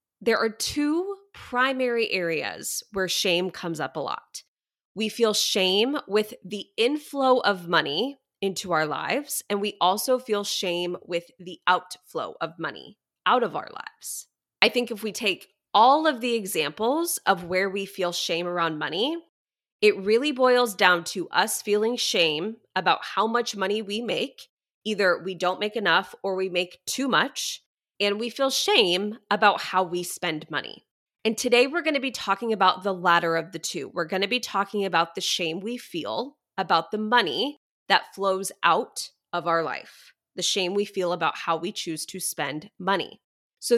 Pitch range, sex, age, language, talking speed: 180-240 Hz, female, 20-39, English, 175 wpm